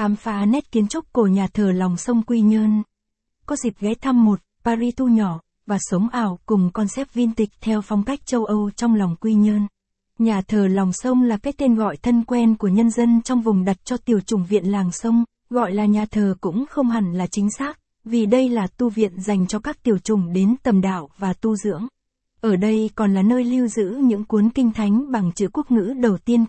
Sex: female